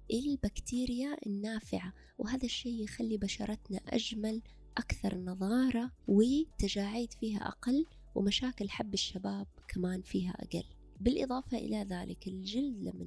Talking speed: 105 wpm